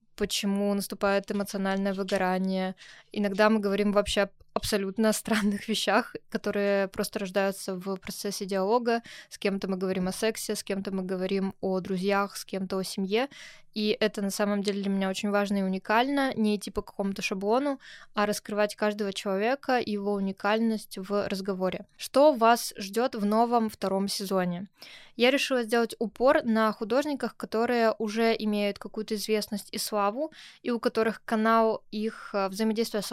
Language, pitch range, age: Russian, 200-225 Hz, 20-39